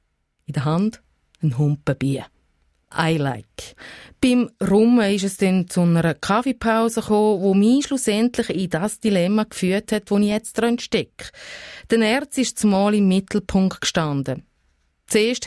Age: 30-49